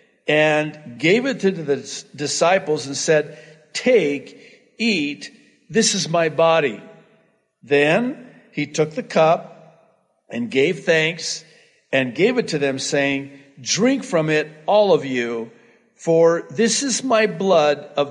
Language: English